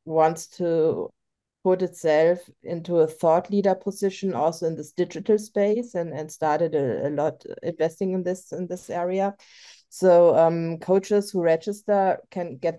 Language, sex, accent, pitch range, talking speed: German, female, German, 155-185 Hz, 155 wpm